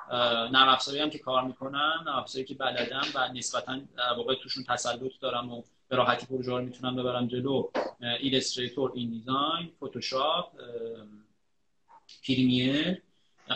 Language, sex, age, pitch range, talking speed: Persian, male, 30-49, 125-160 Hz, 105 wpm